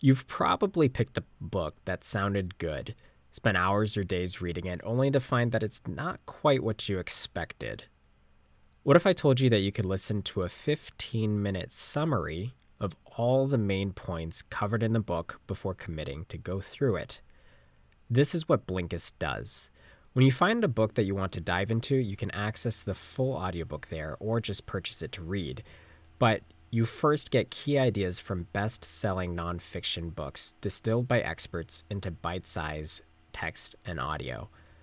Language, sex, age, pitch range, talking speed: English, male, 20-39, 85-115 Hz, 175 wpm